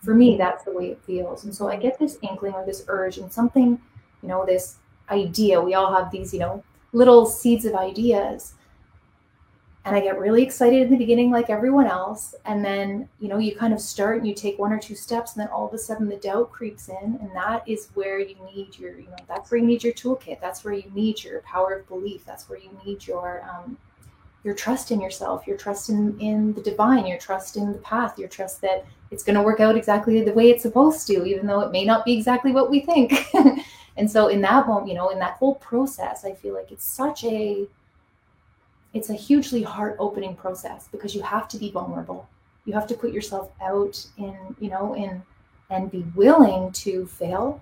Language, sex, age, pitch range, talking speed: English, female, 30-49, 190-230 Hz, 225 wpm